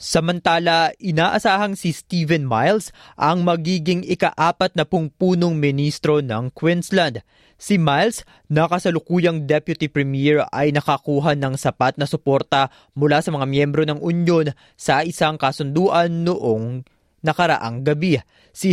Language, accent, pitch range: Filipino, native, 140-170 Hz